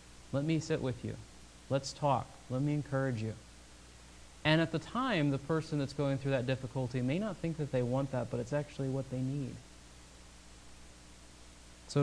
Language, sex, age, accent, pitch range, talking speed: English, male, 30-49, American, 115-140 Hz, 180 wpm